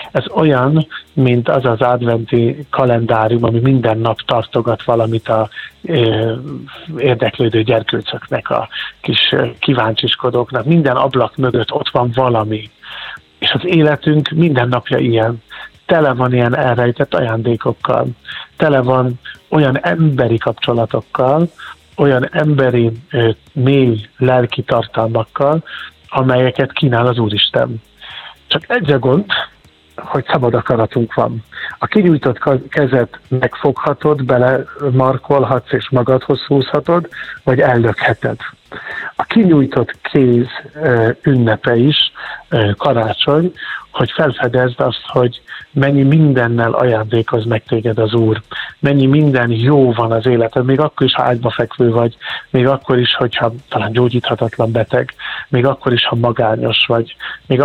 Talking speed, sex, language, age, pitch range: 115 wpm, male, Hungarian, 50-69, 115-140 Hz